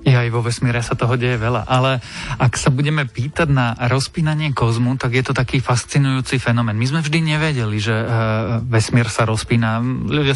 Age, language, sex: 30-49, Slovak, male